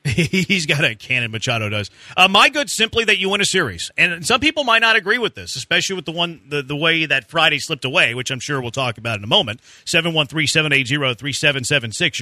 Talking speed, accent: 215 wpm, American